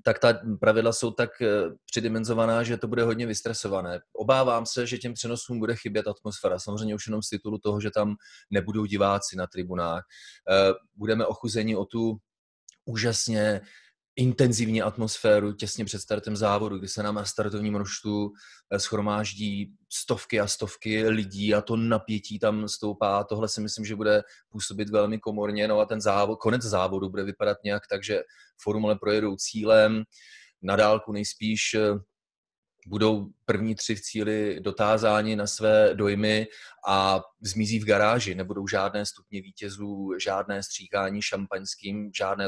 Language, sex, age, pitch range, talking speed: Slovak, male, 30-49, 100-110 Hz, 145 wpm